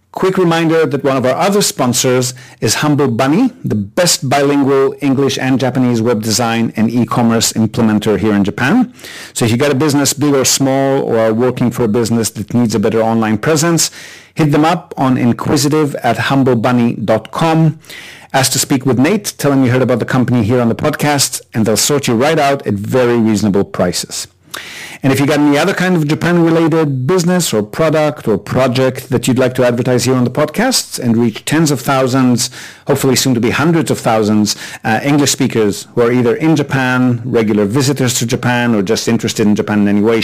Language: English